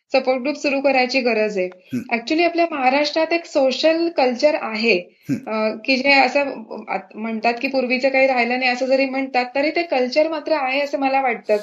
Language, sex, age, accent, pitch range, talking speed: Marathi, female, 20-39, native, 245-290 Hz, 170 wpm